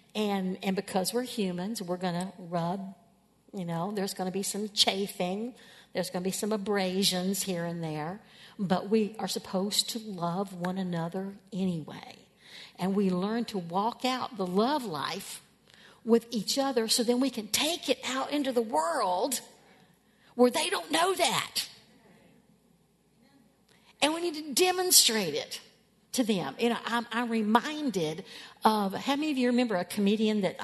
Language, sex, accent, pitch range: English, female, American, 195-240 Hz